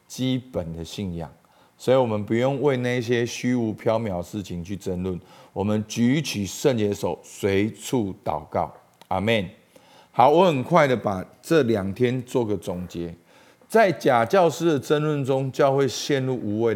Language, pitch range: Chinese, 95-130 Hz